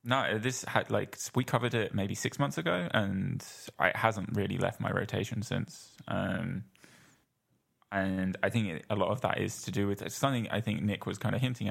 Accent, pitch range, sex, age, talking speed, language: British, 95-120 Hz, male, 10-29, 210 wpm, English